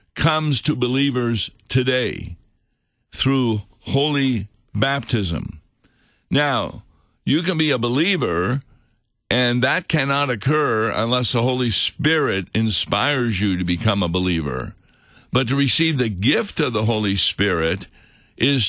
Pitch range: 100-130 Hz